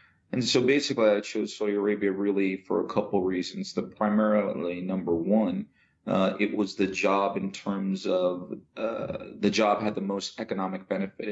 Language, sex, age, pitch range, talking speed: English, male, 40-59, 95-110 Hz, 170 wpm